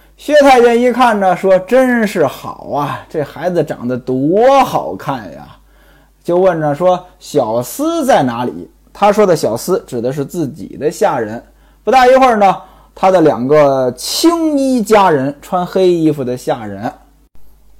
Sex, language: male, Chinese